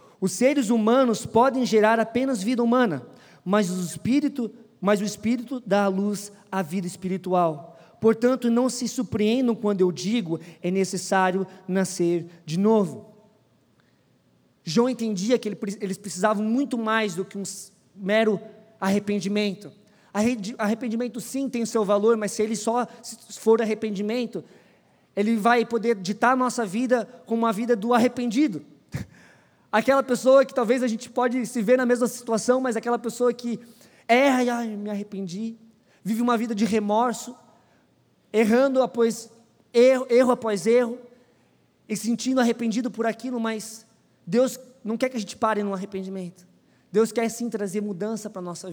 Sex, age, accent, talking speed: male, 20-39, Brazilian, 155 wpm